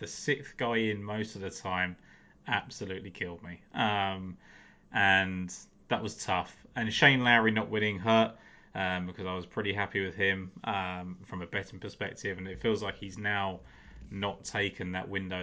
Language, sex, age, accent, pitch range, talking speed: English, male, 20-39, British, 95-105 Hz, 175 wpm